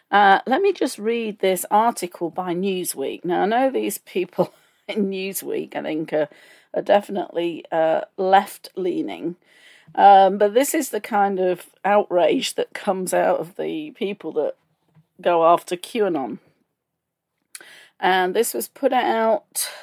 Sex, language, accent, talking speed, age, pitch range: female, English, British, 140 wpm, 40-59, 180-260 Hz